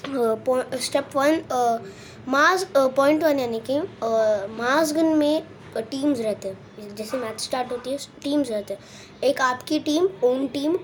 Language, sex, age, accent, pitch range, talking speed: Hindi, female, 20-39, native, 235-295 Hz, 145 wpm